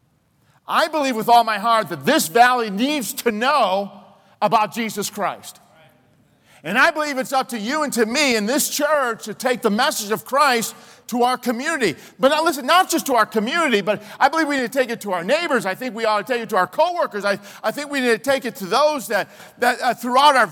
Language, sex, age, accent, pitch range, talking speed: English, male, 50-69, American, 220-295 Hz, 235 wpm